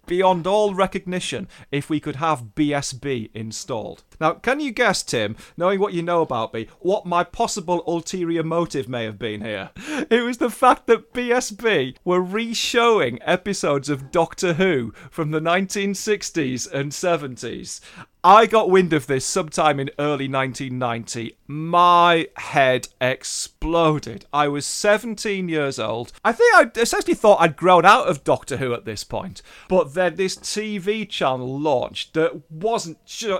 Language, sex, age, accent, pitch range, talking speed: English, male, 40-59, British, 135-200 Hz, 155 wpm